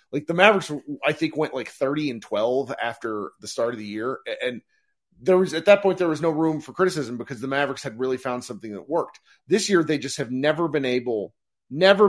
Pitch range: 120-175 Hz